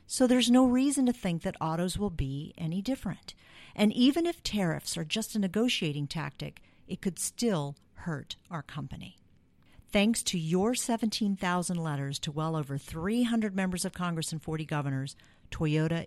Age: 50-69